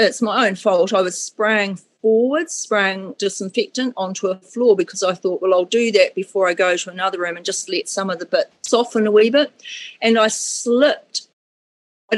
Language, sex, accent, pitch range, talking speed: English, female, Australian, 195-240 Hz, 200 wpm